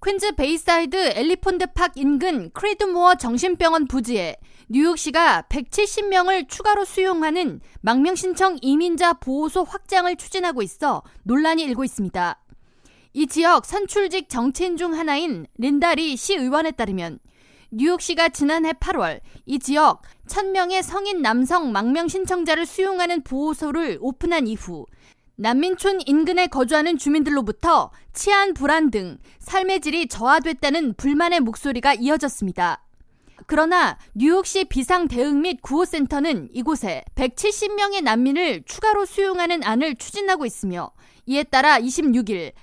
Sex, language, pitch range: female, Korean, 265-360 Hz